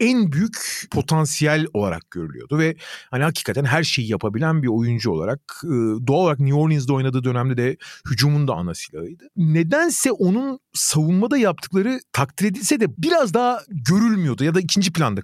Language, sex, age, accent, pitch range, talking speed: Turkish, male, 40-59, native, 140-195 Hz, 155 wpm